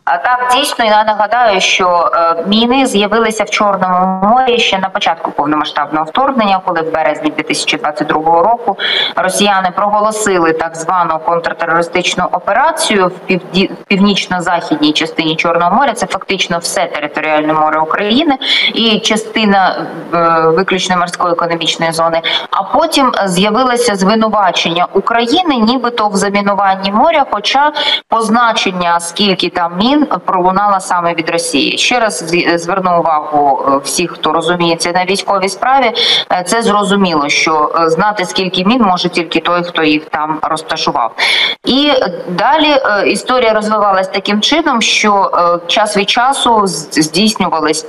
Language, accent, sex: Ukrainian, native, female